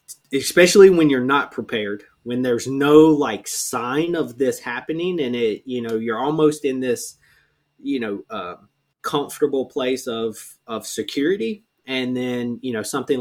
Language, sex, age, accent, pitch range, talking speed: English, male, 20-39, American, 110-130 Hz, 160 wpm